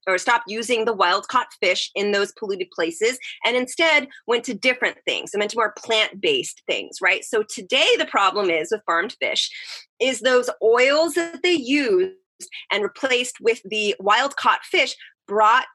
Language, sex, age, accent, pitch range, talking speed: English, female, 30-49, American, 215-315 Hz, 175 wpm